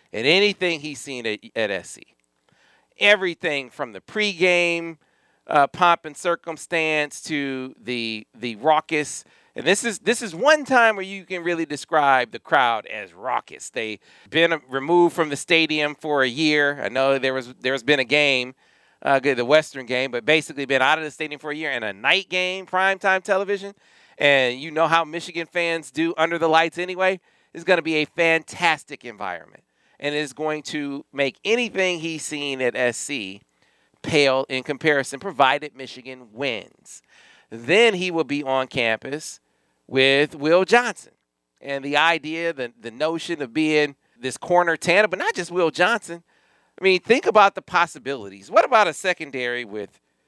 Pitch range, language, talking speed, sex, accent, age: 135-175 Hz, English, 170 wpm, male, American, 40-59